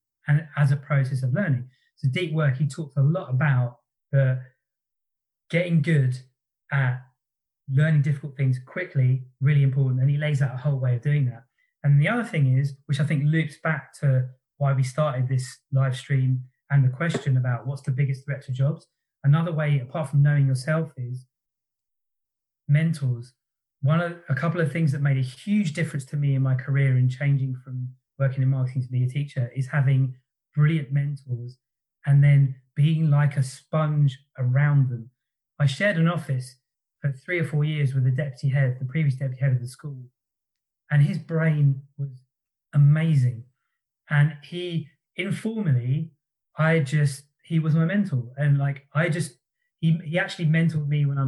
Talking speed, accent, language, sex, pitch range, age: 175 wpm, British, English, male, 130-150 Hz, 20-39